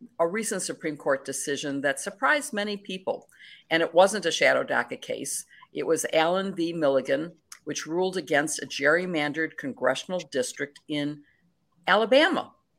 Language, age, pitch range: English, 50-69, 140-195 Hz